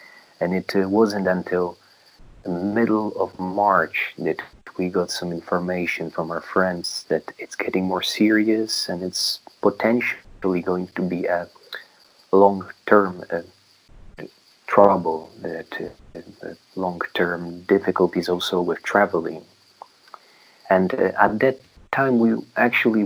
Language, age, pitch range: English, 30-49, 90-100 Hz